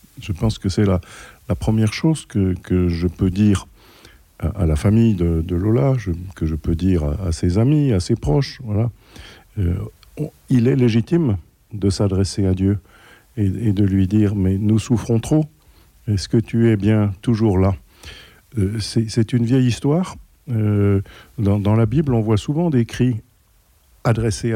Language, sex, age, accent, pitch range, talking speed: French, male, 50-69, French, 95-120 Hz, 175 wpm